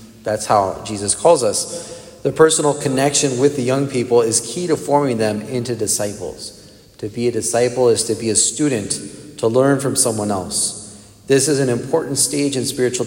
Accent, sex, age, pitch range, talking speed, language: American, male, 40-59, 105-125 Hz, 185 wpm, English